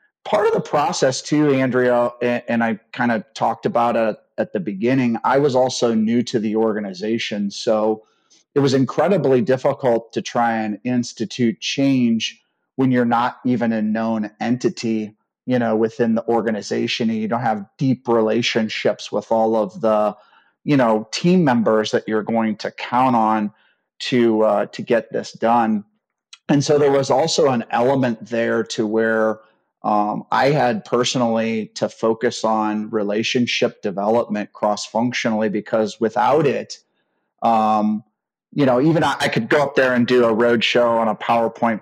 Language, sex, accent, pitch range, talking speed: English, male, American, 110-125 Hz, 160 wpm